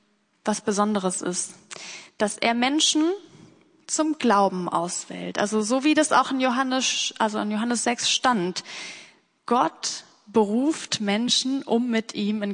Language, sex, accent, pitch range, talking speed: German, female, German, 200-255 Hz, 135 wpm